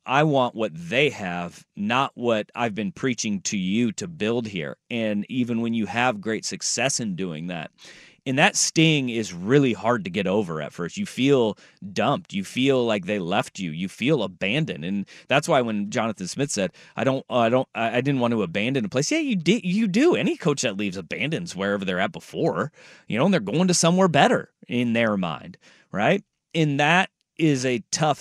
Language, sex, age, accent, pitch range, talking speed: English, male, 30-49, American, 110-165 Hz, 210 wpm